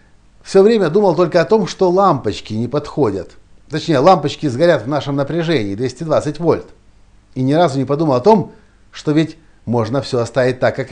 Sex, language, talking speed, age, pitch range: male, Russian, 175 wpm, 60-79, 120-185 Hz